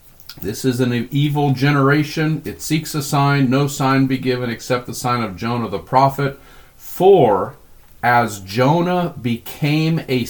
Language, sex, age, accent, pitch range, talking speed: English, male, 50-69, American, 115-145 Hz, 145 wpm